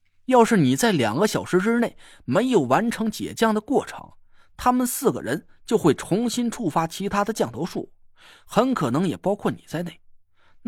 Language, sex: Chinese, male